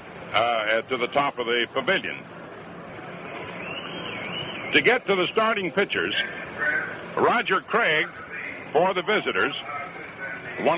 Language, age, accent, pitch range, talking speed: English, 60-79, American, 150-195 Hz, 105 wpm